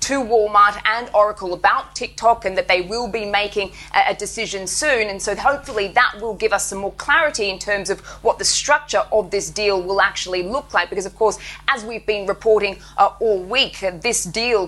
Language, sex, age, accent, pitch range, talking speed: English, female, 20-39, Australian, 190-220 Hz, 210 wpm